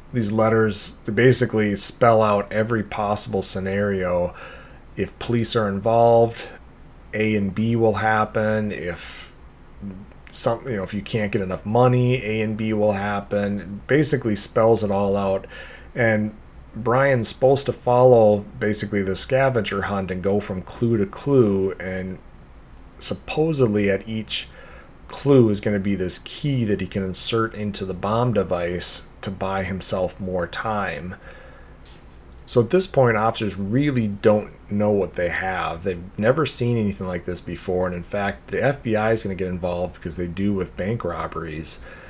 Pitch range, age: 95-115 Hz, 30-49